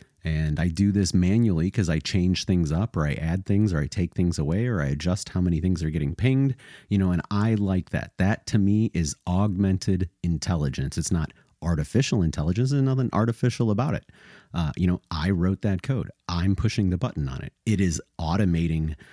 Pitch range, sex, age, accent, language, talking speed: 80-100 Hz, male, 30-49, American, English, 205 wpm